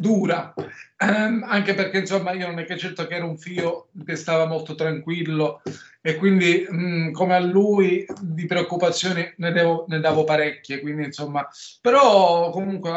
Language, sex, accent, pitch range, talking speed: Italian, male, native, 150-170 Hz, 160 wpm